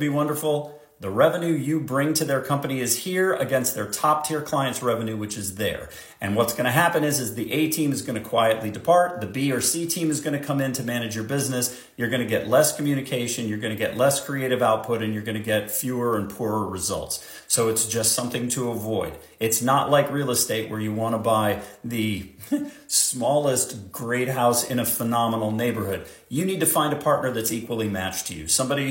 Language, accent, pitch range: English, American, 110-145 Hz